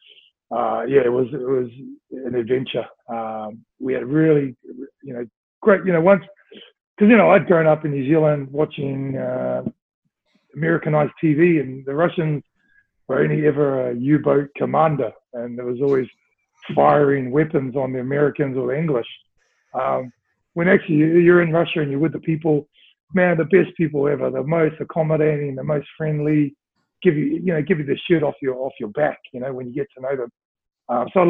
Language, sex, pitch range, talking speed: English, male, 135-165 Hz, 185 wpm